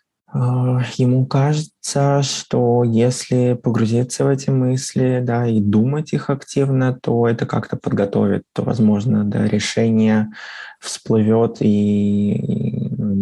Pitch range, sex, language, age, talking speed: 110-135 Hz, male, Russian, 20-39, 110 wpm